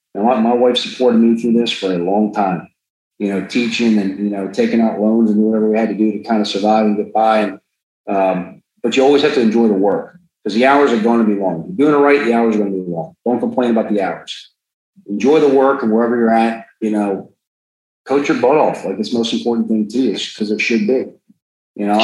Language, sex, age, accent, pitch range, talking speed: English, male, 40-59, American, 105-120 Hz, 255 wpm